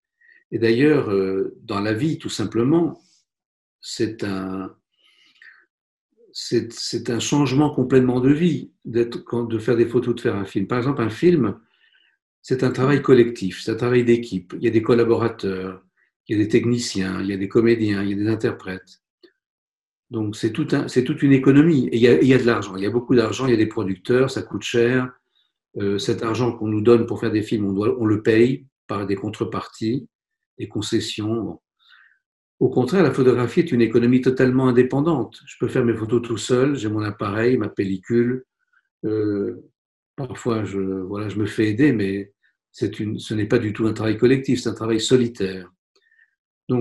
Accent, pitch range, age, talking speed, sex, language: French, 105-130 Hz, 50-69, 195 wpm, male, French